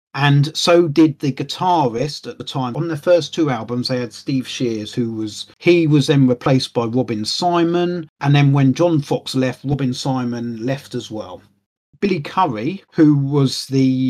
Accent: British